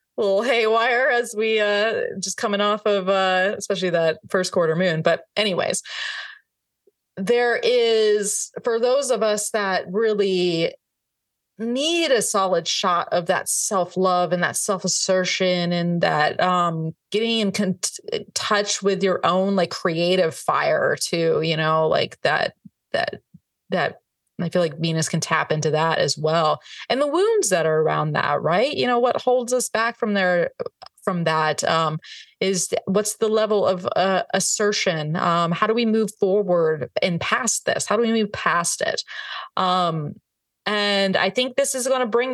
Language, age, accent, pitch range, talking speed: English, 30-49, American, 170-220 Hz, 165 wpm